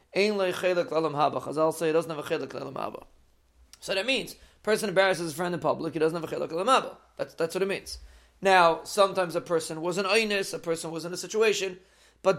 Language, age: English, 40-59